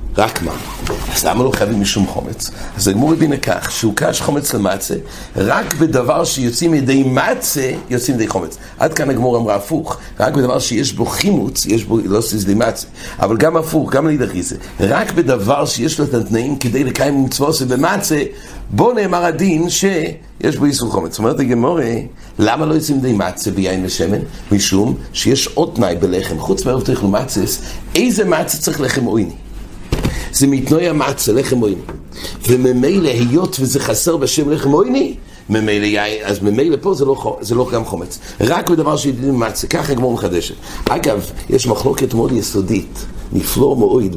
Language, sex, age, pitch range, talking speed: English, male, 60-79, 105-145 Hz, 125 wpm